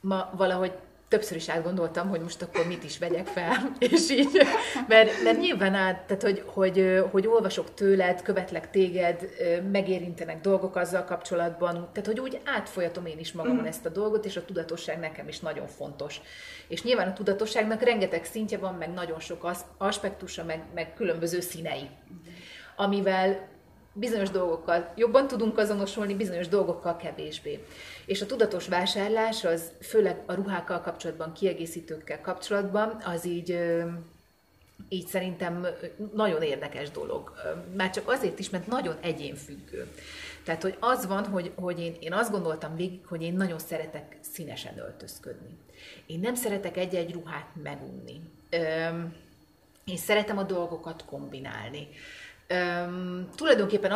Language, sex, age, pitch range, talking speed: Hungarian, female, 30-49, 170-205 Hz, 140 wpm